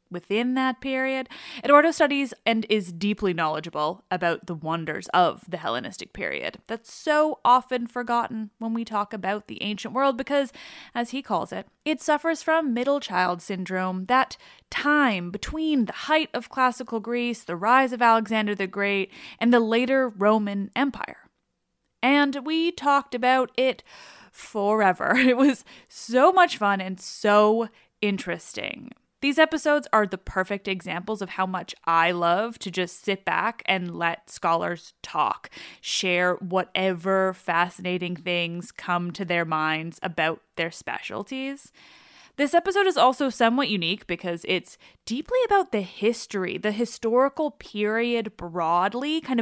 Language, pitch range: English, 190-260 Hz